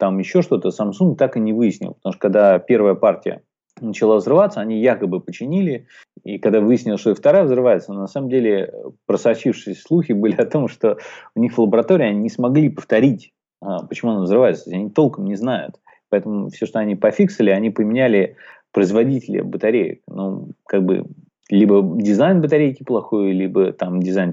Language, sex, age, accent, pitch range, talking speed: Russian, male, 30-49, native, 95-125 Hz, 165 wpm